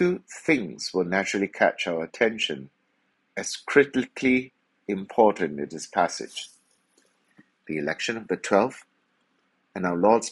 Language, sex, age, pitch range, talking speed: English, male, 60-79, 90-120 Hz, 120 wpm